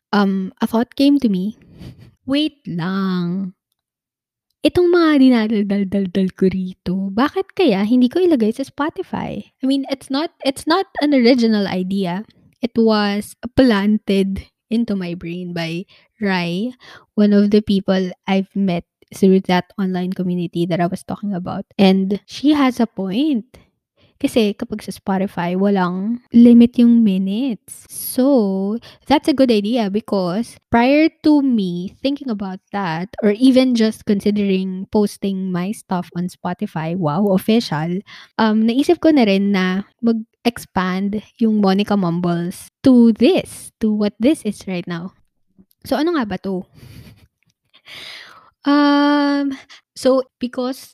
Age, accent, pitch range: 20-39, native, 185-245 Hz